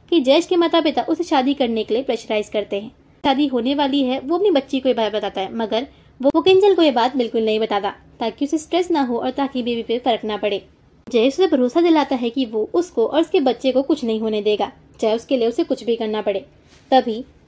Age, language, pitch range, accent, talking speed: 20-39, Hindi, 230-310 Hz, native, 235 wpm